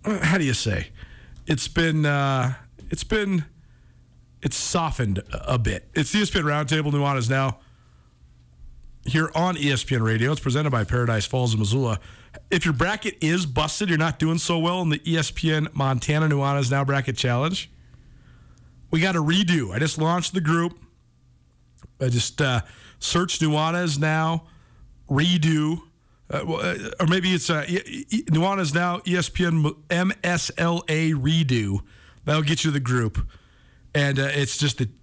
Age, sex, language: 50-69, male, English